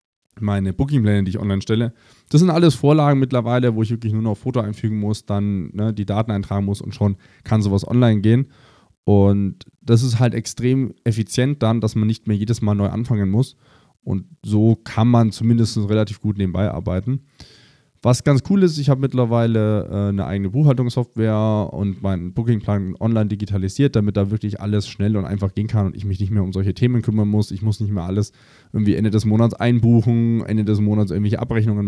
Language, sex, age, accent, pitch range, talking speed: German, male, 20-39, German, 105-120 Hz, 200 wpm